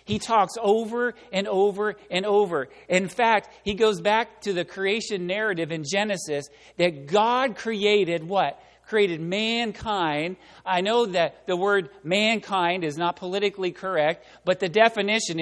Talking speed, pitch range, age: 145 wpm, 180-225 Hz, 40-59